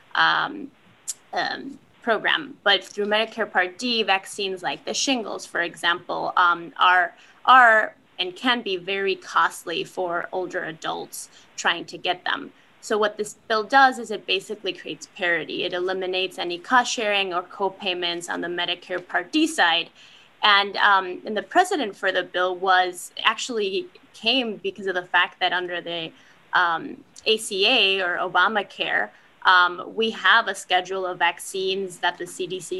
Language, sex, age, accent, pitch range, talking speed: English, female, 20-39, American, 180-225 Hz, 155 wpm